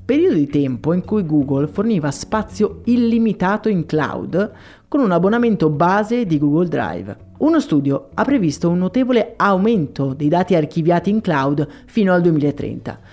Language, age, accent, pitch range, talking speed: Italian, 30-49, native, 150-220 Hz, 150 wpm